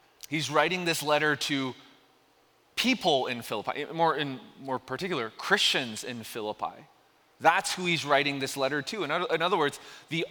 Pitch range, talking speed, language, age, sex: 165-220 Hz, 165 wpm, English, 30-49, male